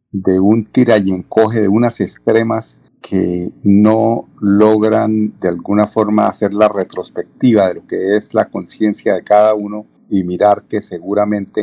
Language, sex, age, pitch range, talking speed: Spanish, male, 40-59, 95-115 Hz, 155 wpm